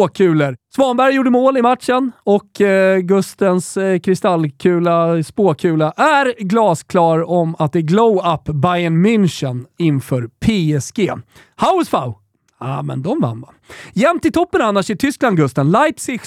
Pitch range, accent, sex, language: 160-240 Hz, native, male, Swedish